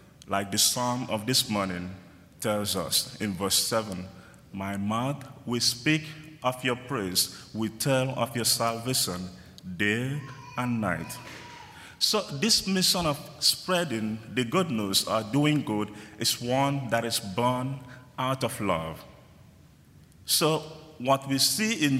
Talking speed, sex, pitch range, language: 135 wpm, male, 110-140 Hz, English